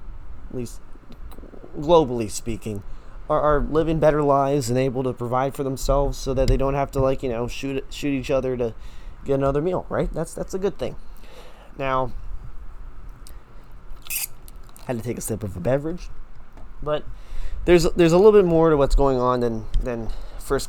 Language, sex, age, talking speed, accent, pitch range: English, male, 20-39, 175 wpm, American, 120-150 Hz